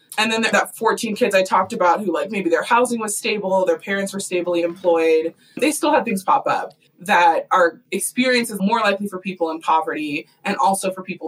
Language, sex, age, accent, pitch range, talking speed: English, female, 20-39, American, 175-250 Hz, 205 wpm